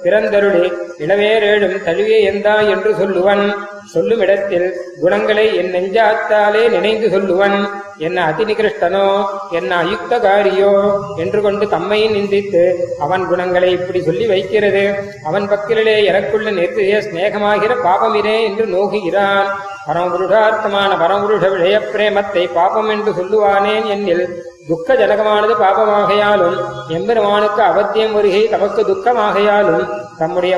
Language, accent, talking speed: Tamil, native, 95 wpm